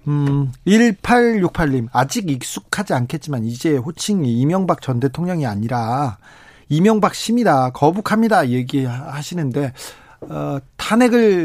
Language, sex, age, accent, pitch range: Korean, male, 40-59, native, 135-180 Hz